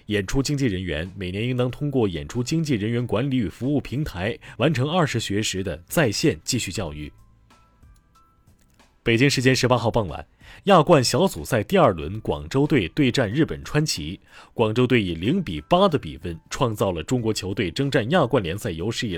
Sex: male